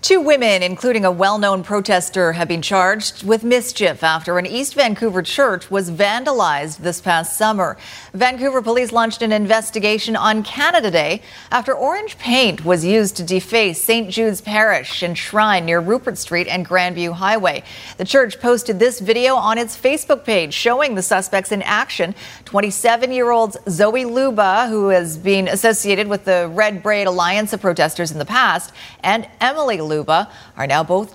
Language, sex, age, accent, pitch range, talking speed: English, female, 40-59, American, 180-225 Hz, 165 wpm